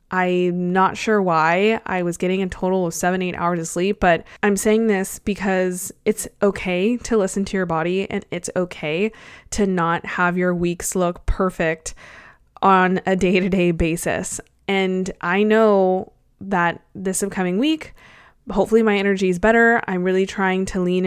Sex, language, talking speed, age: female, English, 165 wpm, 20-39